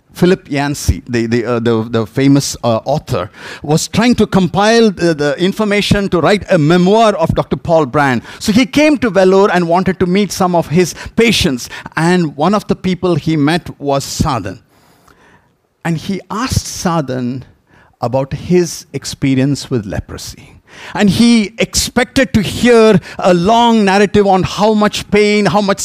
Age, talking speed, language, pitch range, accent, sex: 50-69, 160 wpm, English, 130-200 Hz, Indian, male